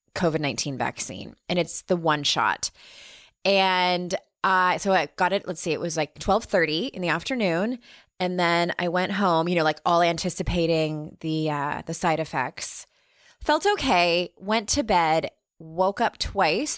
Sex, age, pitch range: female, 20-39, 160-200 Hz